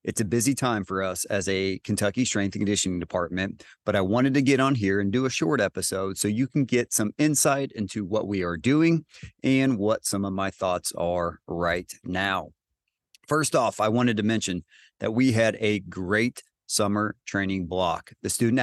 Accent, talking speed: American, 195 wpm